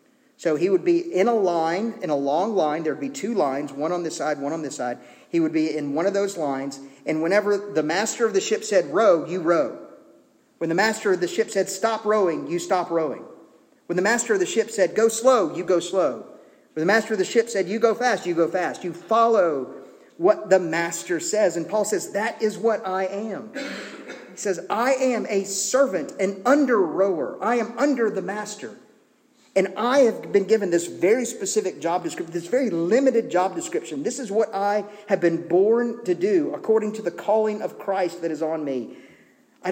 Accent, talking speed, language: American, 215 wpm, English